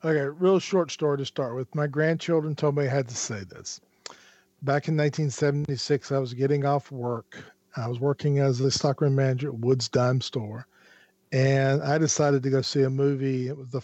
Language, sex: English, male